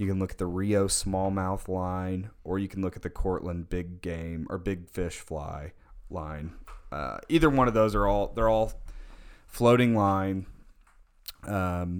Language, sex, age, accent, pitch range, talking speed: English, male, 30-49, American, 90-110 Hz, 170 wpm